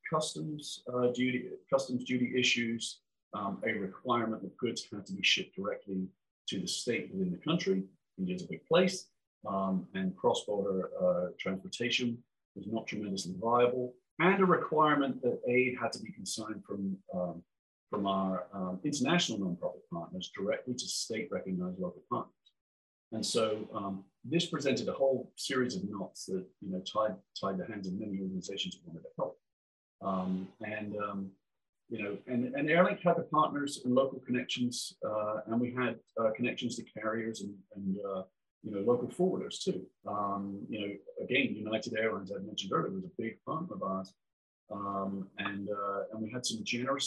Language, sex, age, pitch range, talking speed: English, male, 40-59, 95-135 Hz, 170 wpm